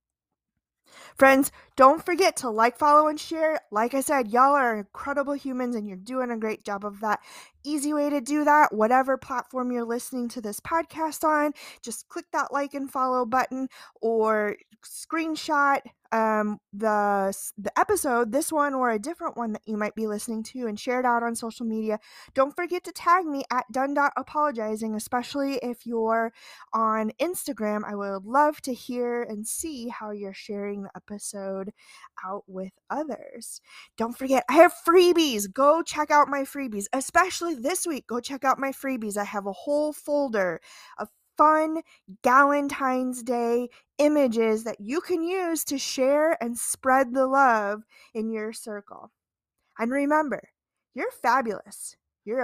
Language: English